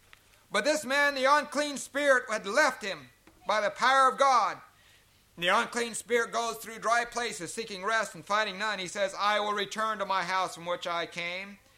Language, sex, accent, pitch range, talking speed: English, male, American, 185-255 Hz, 195 wpm